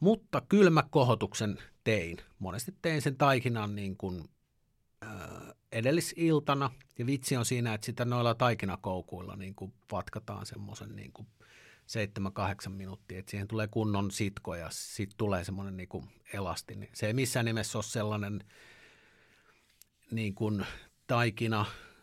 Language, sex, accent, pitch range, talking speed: Finnish, male, native, 100-120 Hz, 130 wpm